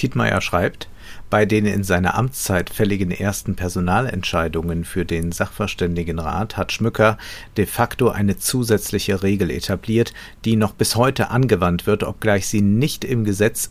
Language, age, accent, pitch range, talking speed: German, 50-69, German, 95-115 Hz, 140 wpm